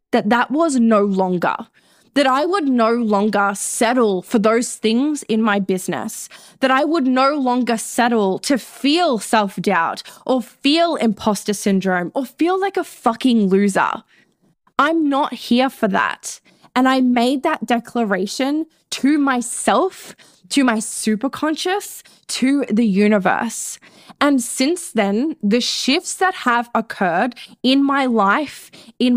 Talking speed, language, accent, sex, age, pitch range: 135 wpm, English, Australian, female, 10-29, 200-255 Hz